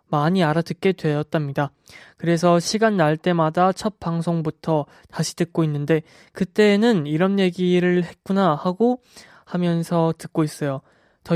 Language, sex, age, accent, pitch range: Korean, male, 20-39, native, 150-185 Hz